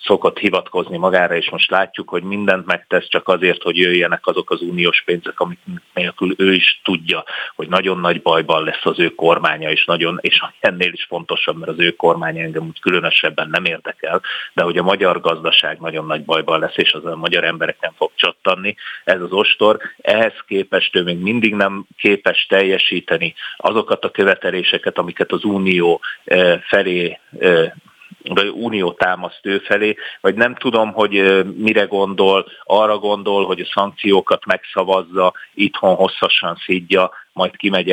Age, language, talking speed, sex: 30-49, Hungarian, 160 wpm, male